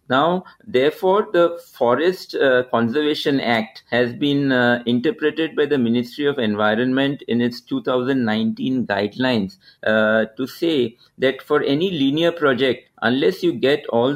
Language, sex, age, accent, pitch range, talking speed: English, male, 50-69, Indian, 115-145 Hz, 135 wpm